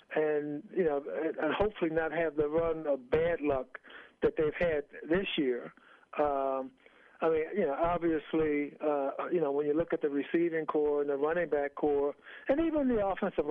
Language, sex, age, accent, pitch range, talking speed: English, male, 60-79, American, 145-175 Hz, 185 wpm